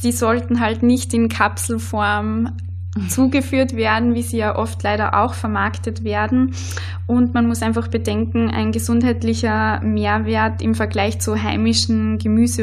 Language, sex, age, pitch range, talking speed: German, female, 20-39, 90-115 Hz, 140 wpm